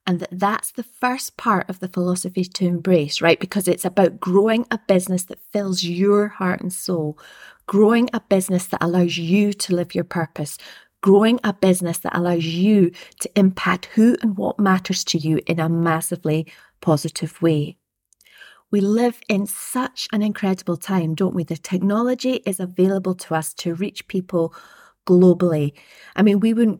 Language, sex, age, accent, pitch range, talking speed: English, female, 30-49, British, 170-210 Hz, 170 wpm